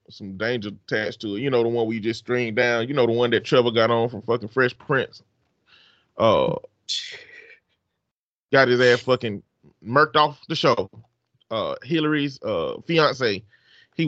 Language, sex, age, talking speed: English, male, 30-49, 165 wpm